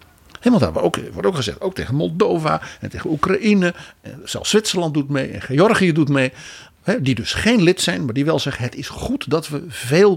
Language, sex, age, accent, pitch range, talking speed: Dutch, male, 60-79, Dutch, 110-160 Hz, 210 wpm